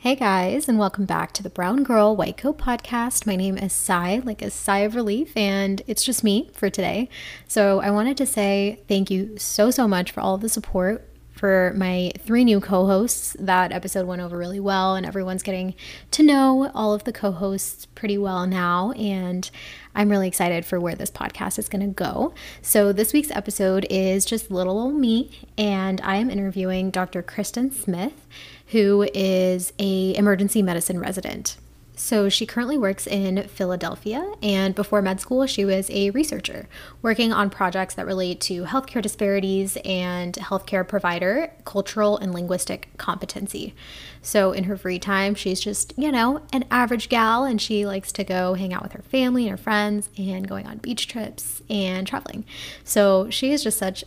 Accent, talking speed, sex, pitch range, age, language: American, 180 wpm, female, 190-220 Hz, 20-39, English